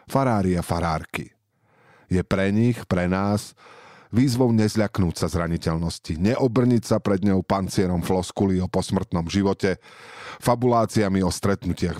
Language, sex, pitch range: Slovak, male, 90-115 Hz